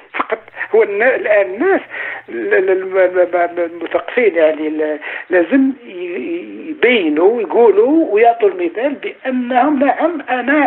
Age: 60-79